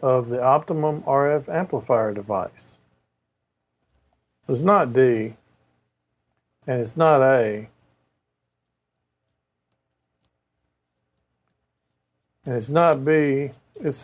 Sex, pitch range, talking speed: male, 105-140 Hz, 75 wpm